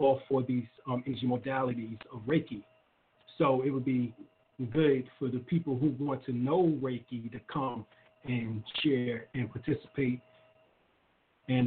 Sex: male